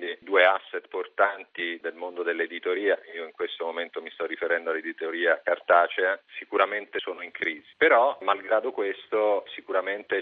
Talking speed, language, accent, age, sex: 135 wpm, Italian, native, 40-59, male